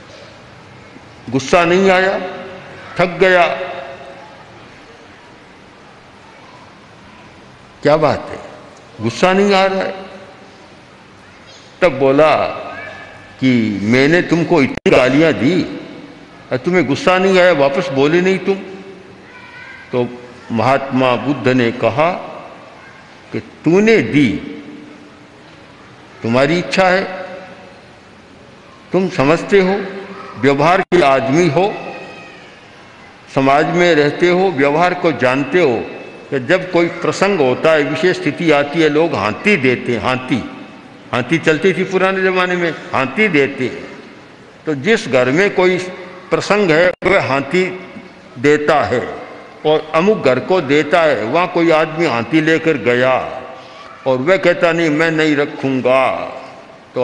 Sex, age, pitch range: male, 60-79, 135-185 Hz